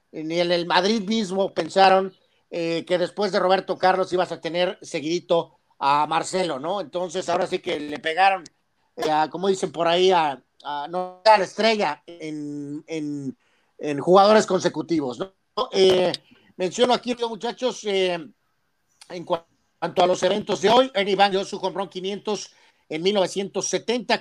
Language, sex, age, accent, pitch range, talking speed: Spanish, male, 40-59, Mexican, 170-200 Hz, 150 wpm